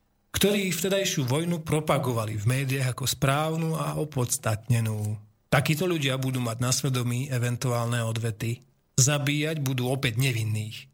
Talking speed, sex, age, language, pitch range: 120 wpm, male, 40-59, Slovak, 120-150 Hz